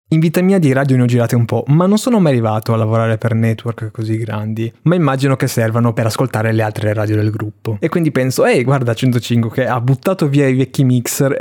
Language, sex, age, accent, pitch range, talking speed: Italian, male, 20-39, native, 115-155 Hz, 235 wpm